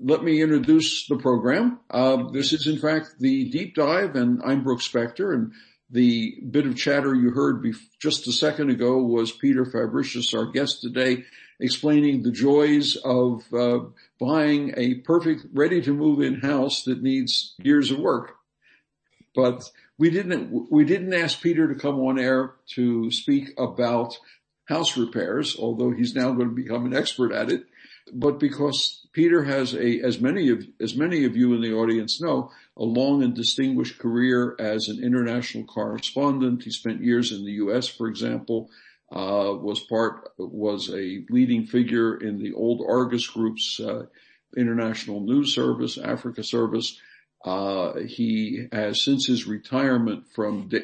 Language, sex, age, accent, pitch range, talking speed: English, male, 60-79, American, 115-145 Hz, 160 wpm